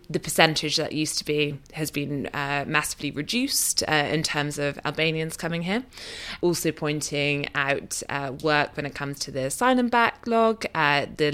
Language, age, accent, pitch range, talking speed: English, 20-39, British, 150-175 Hz, 170 wpm